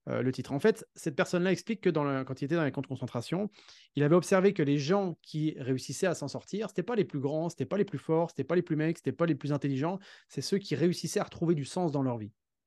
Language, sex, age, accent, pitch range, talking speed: French, male, 30-49, French, 145-195 Hz, 300 wpm